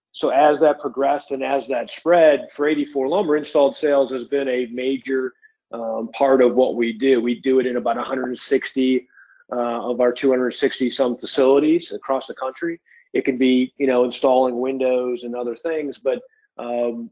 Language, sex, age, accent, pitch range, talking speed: English, male, 40-59, American, 125-145 Hz, 175 wpm